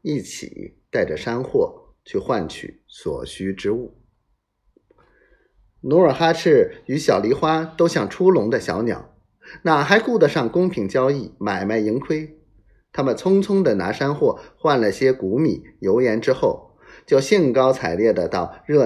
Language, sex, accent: Chinese, male, native